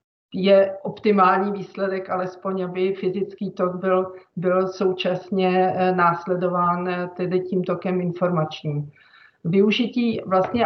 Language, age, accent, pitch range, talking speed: Czech, 40-59, native, 175-190 Hz, 95 wpm